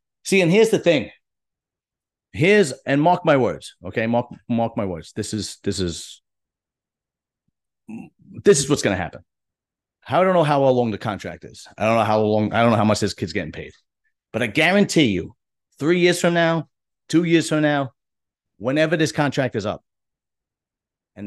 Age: 40-59